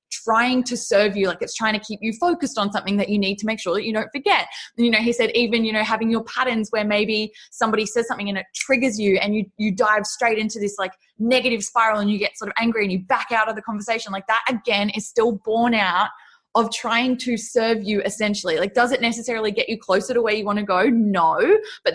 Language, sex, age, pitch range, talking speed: English, female, 20-39, 195-230 Hz, 255 wpm